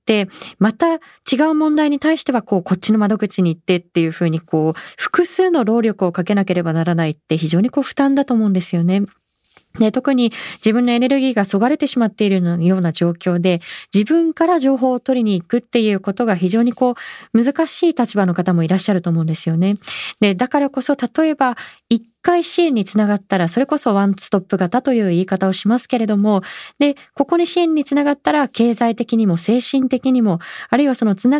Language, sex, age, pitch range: Japanese, female, 20-39, 190-270 Hz